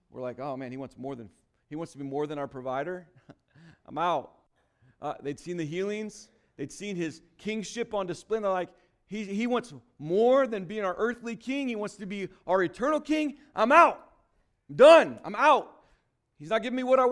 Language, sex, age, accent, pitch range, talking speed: English, male, 40-59, American, 120-185 Hz, 210 wpm